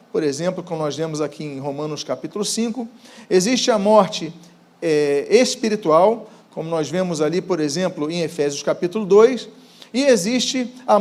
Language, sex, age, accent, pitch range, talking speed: Portuguese, male, 40-59, Brazilian, 180-230 Hz, 145 wpm